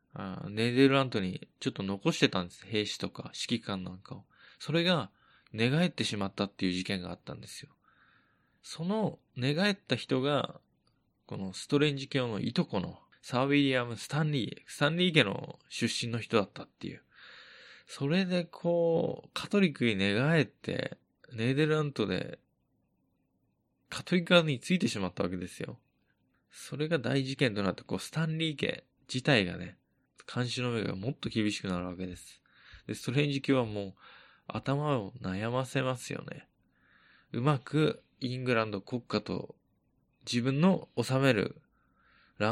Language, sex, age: Japanese, male, 20-39